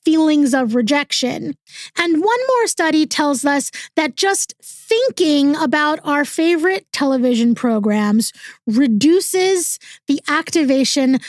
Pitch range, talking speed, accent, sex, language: 260-335 Hz, 105 wpm, American, female, English